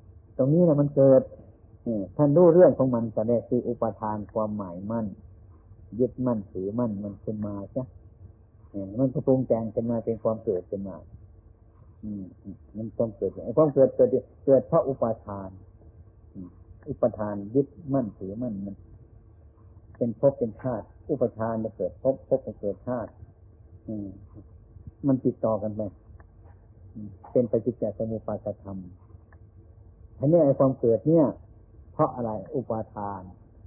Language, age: Thai, 60-79